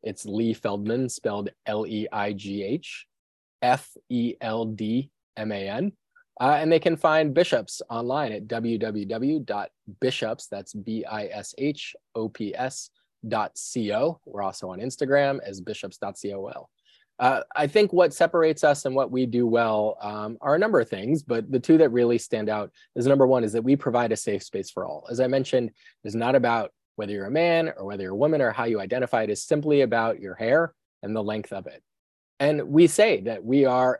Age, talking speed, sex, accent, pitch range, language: 20-39, 170 wpm, male, American, 110-150 Hz, English